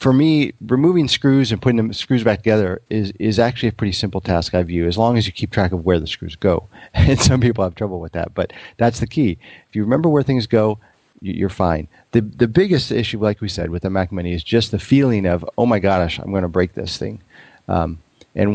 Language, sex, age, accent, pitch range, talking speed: English, male, 40-59, American, 95-115 Hz, 245 wpm